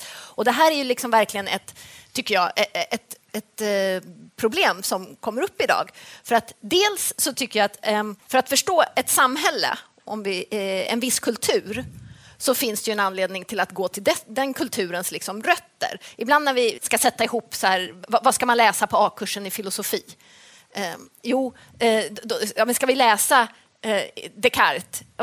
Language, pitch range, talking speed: Swedish, 210-265 Hz, 165 wpm